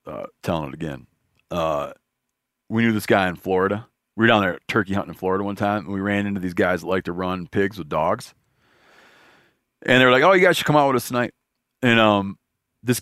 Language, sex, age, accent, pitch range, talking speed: English, male, 40-59, American, 95-115 Hz, 225 wpm